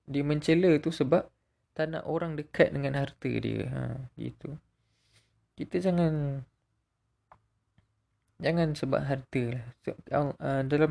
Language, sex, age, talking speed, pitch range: Malay, male, 20-39, 115 wpm, 120-145 Hz